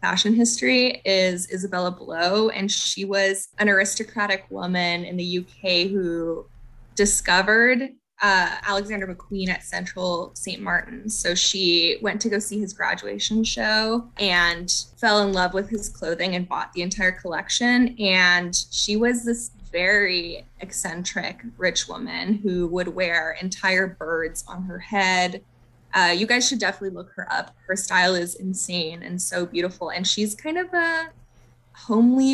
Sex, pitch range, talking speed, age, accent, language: female, 180-210 Hz, 150 wpm, 20-39, American, English